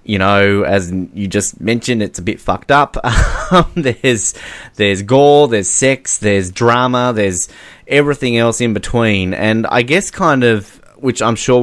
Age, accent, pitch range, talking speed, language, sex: 20-39, Australian, 95-115 Hz, 160 wpm, English, male